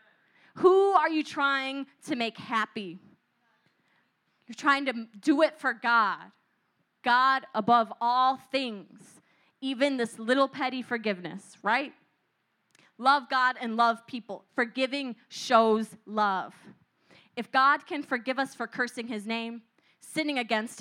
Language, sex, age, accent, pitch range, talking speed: English, female, 20-39, American, 220-275 Hz, 125 wpm